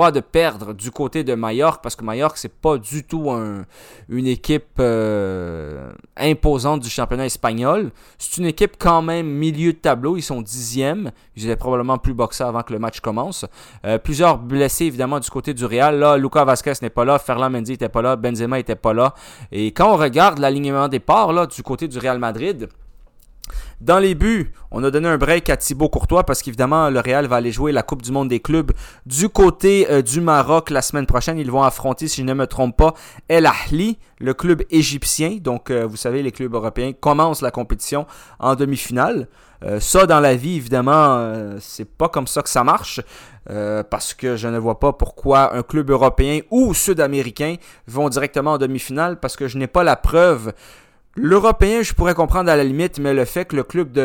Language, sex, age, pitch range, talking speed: French, male, 20-39, 125-160 Hz, 210 wpm